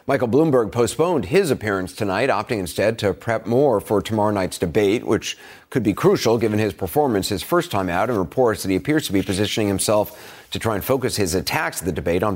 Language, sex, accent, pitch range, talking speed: English, male, American, 100-130 Hz, 220 wpm